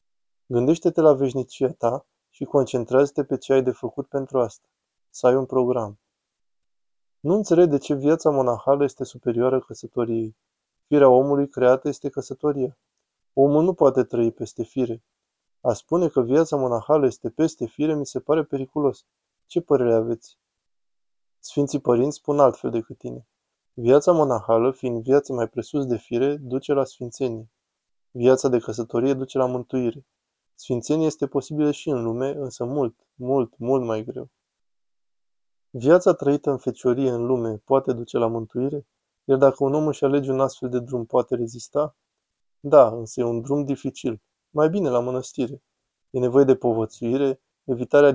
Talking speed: 155 wpm